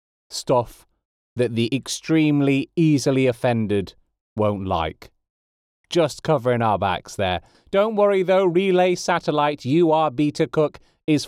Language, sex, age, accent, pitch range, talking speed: English, male, 30-49, British, 125-175 Hz, 115 wpm